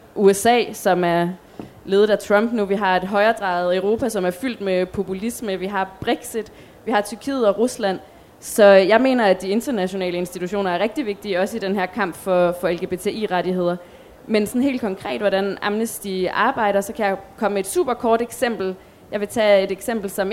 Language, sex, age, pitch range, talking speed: Danish, female, 20-39, 185-215 Hz, 190 wpm